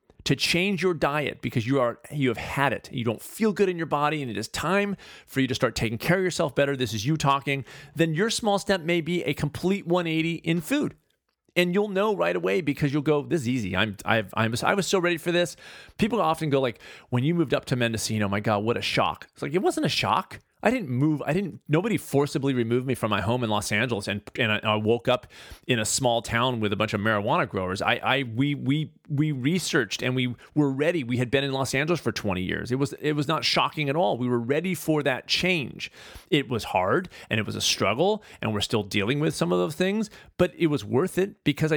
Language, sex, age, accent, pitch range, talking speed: English, male, 40-59, American, 115-170 Hz, 250 wpm